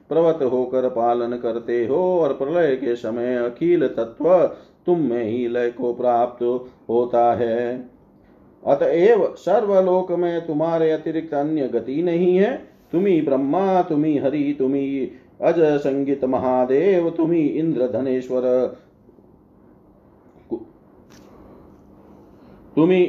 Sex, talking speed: male, 100 wpm